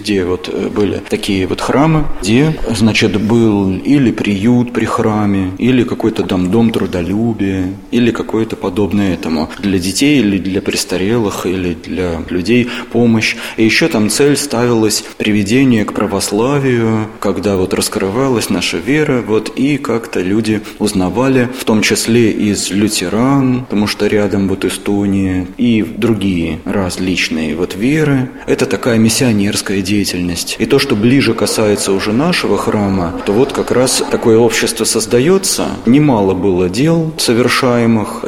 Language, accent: Russian, native